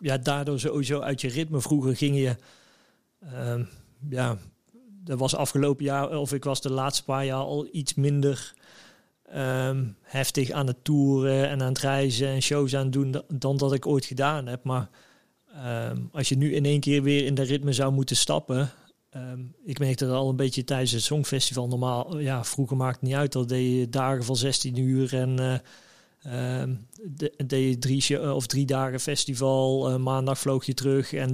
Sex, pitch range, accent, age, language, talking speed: male, 130-145 Hz, Dutch, 40-59, Dutch, 195 wpm